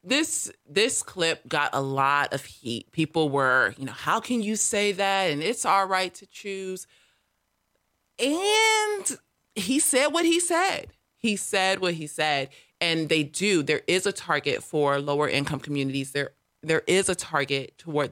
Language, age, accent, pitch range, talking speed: English, 30-49, American, 155-200 Hz, 170 wpm